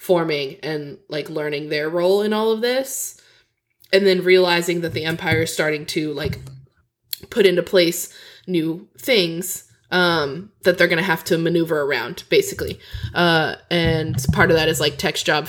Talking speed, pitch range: 170 wpm, 155-195 Hz